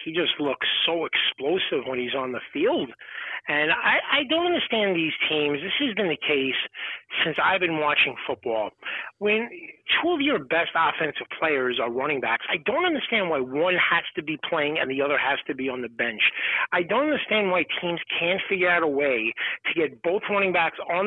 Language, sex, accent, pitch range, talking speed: English, male, American, 155-225 Hz, 200 wpm